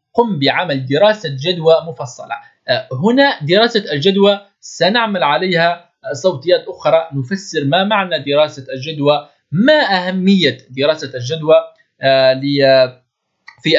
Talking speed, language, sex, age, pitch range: 95 wpm, Arabic, male, 20-39, 135-200 Hz